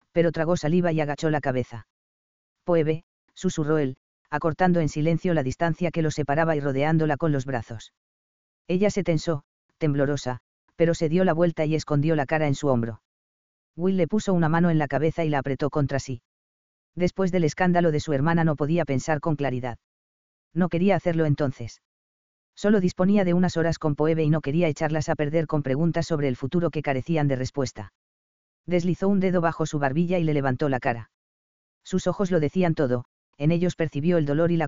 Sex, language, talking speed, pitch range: female, English, 195 wpm, 130-170 Hz